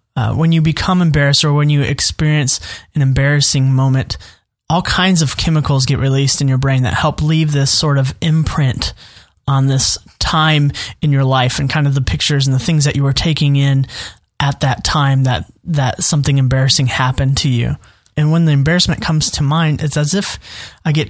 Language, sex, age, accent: English, male, 20-39, American